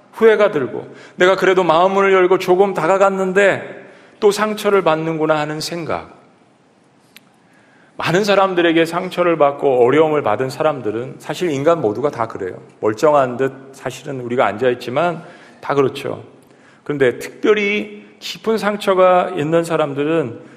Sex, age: male, 40-59